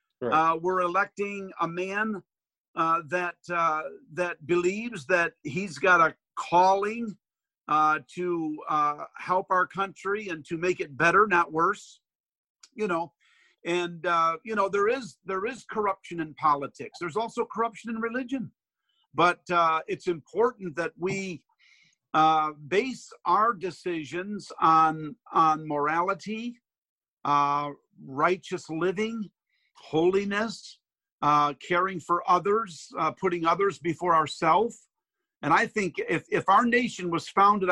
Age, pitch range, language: 50-69, 165-205 Hz, English